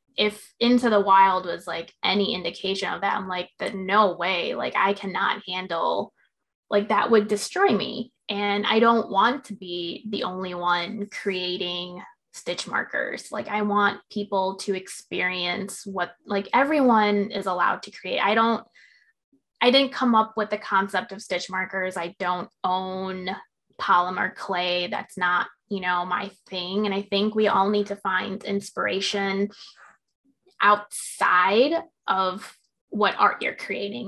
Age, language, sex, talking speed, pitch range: 20-39, English, female, 155 wpm, 185-210 Hz